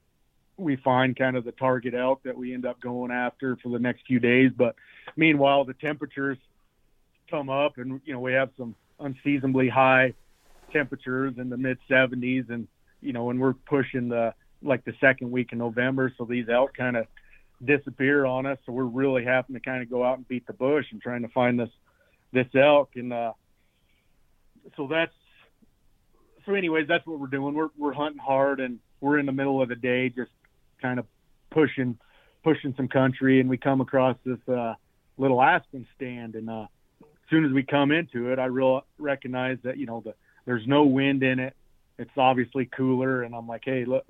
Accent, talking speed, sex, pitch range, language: American, 195 wpm, male, 120-135 Hz, English